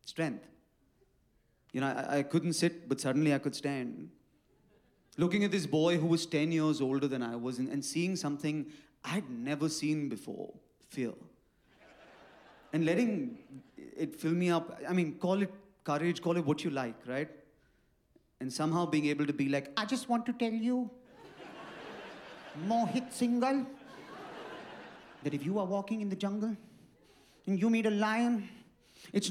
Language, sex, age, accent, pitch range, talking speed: English, male, 30-49, Indian, 145-205 Hz, 160 wpm